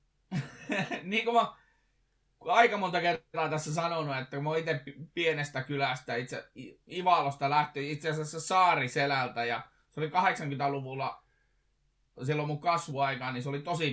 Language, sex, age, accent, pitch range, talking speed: Finnish, male, 20-39, native, 135-160 Hz, 135 wpm